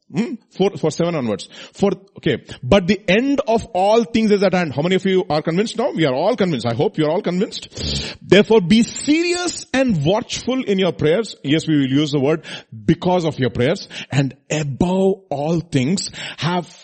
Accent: Indian